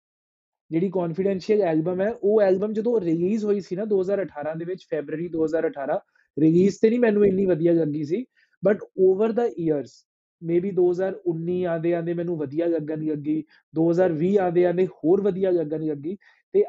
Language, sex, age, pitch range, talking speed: Punjabi, male, 20-39, 160-195 Hz, 160 wpm